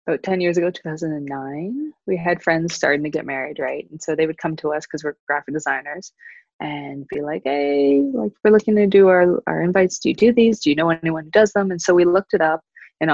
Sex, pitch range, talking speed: female, 150-180 Hz, 245 wpm